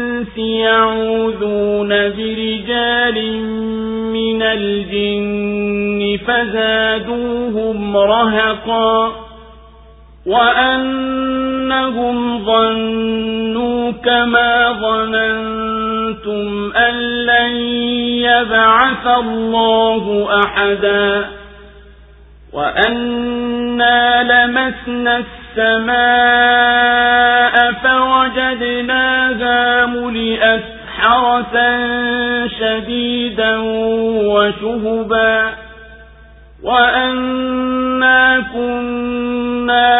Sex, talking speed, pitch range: male, 40 wpm, 220-245 Hz